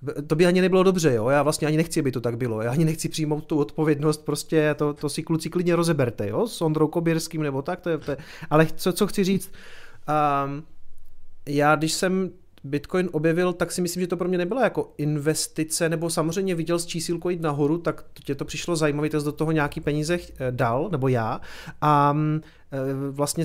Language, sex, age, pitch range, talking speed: Czech, male, 30-49, 150-175 Hz, 195 wpm